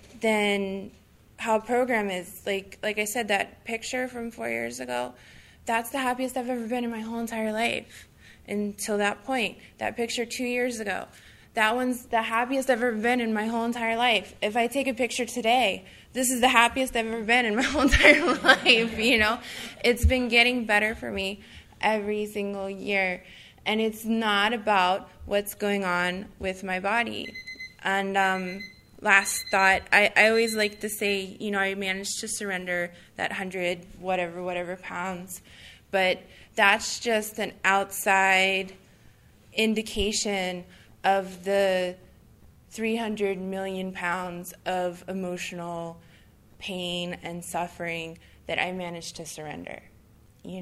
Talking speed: 150 wpm